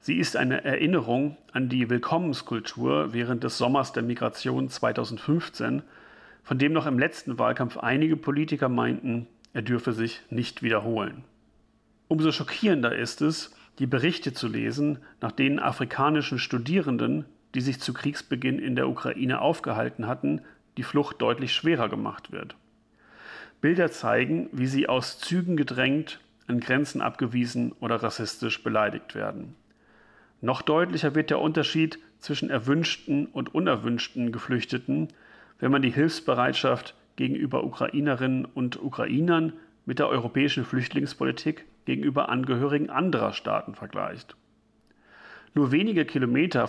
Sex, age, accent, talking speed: male, 40-59, German, 125 wpm